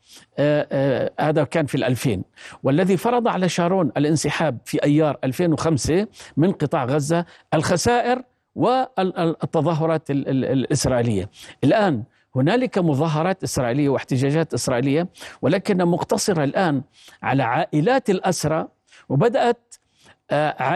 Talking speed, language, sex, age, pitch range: 100 wpm, Arabic, male, 50-69, 140-185 Hz